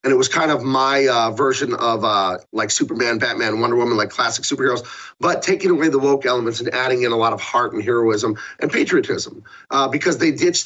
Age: 30-49